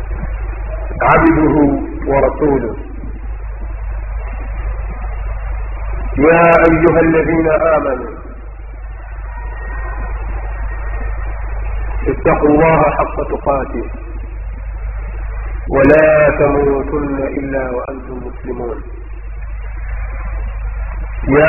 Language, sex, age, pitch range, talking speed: Swahili, male, 40-59, 100-155 Hz, 45 wpm